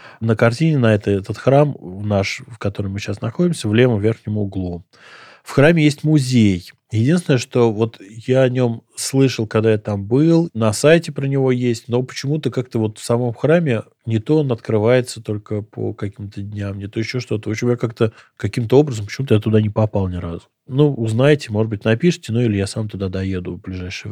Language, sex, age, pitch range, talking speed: Russian, male, 20-39, 110-135 Hz, 195 wpm